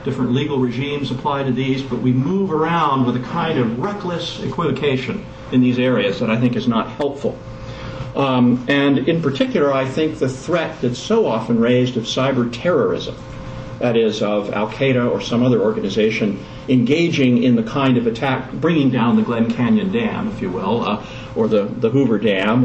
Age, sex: 50-69, male